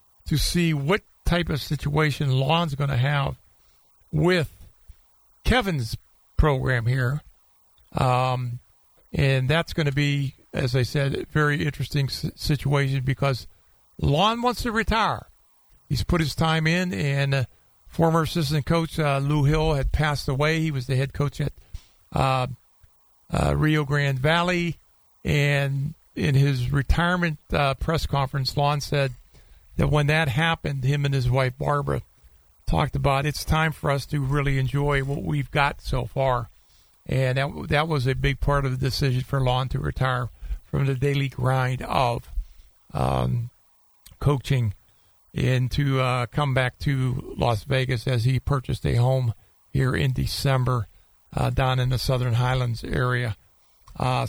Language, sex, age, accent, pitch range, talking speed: English, male, 50-69, American, 125-150 Hz, 150 wpm